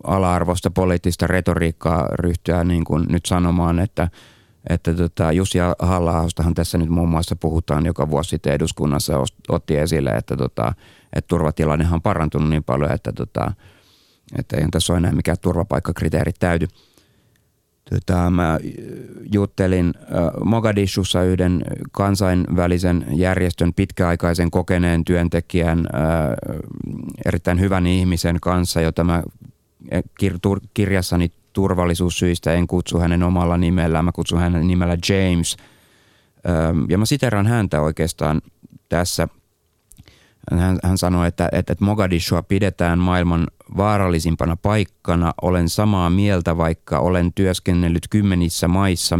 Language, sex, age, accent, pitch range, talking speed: Finnish, male, 30-49, native, 85-95 Hz, 115 wpm